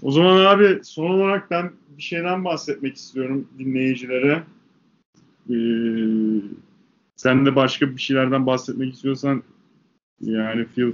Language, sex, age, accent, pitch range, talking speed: Turkish, male, 30-49, native, 115-150 Hz, 115 wpm